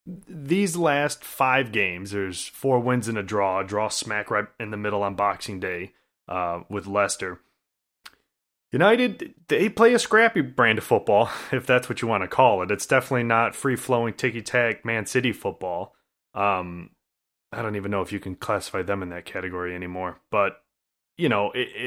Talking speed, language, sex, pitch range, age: 180 wpm, English, male, 105-130 Hz, 30-49